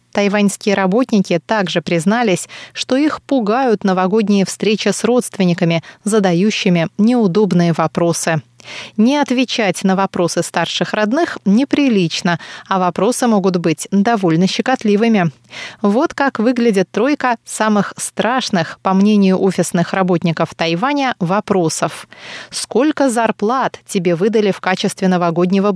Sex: female